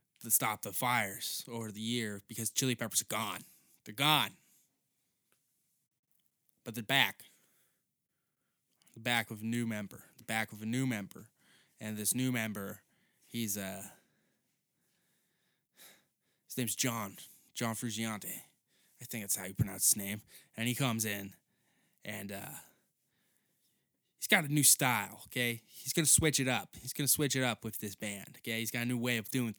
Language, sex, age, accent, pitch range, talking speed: English, male, 20-39, American, 105-130 Hz, 165 wpm